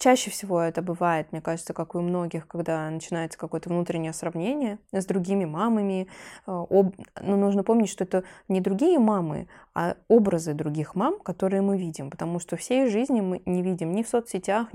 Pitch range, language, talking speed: 170-205 Hz, Russian, 175 wpm